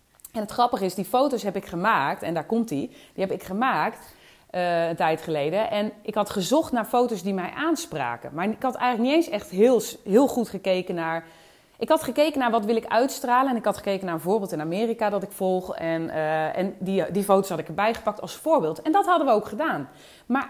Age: 30-49